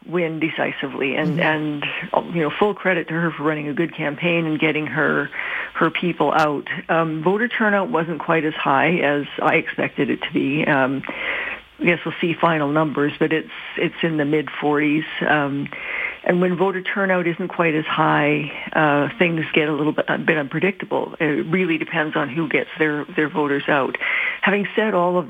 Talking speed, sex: 190 wpm, female